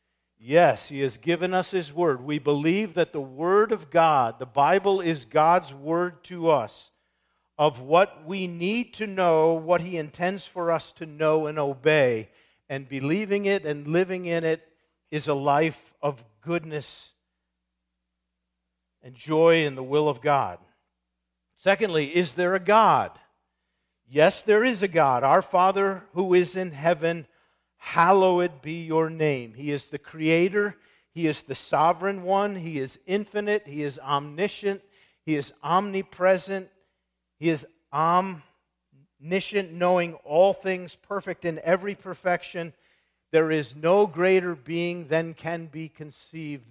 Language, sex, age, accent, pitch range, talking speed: English, male, 50-69, American, 140-185 Hz, 145 wpm